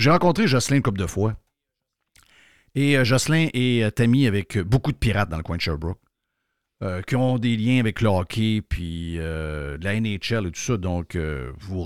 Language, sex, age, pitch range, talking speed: French, male, 50-69, 90-120 Hz, 215 wpm